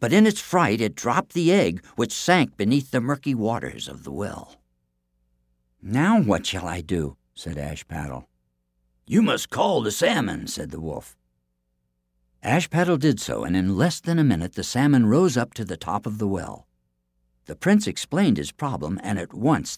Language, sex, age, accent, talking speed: English, male, 60-79, American, 180 wpm